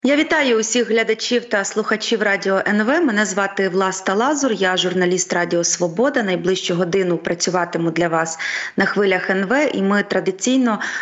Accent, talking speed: native, 145 wpm